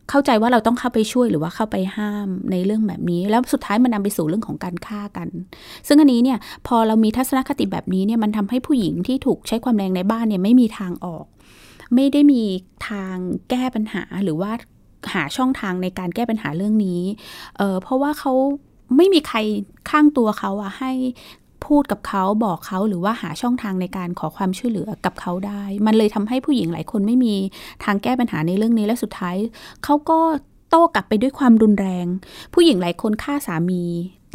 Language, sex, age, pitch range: Thai, female, 20-39, 190-245 Hz